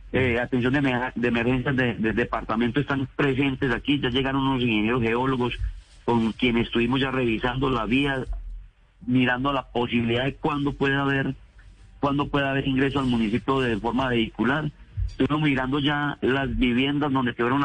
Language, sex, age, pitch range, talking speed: Spanish, male, 40-59, 120-150 Hz, 145 wpm